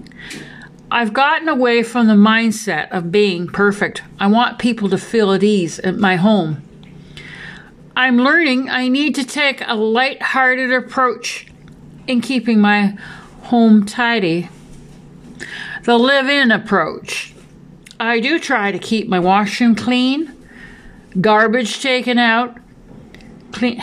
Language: English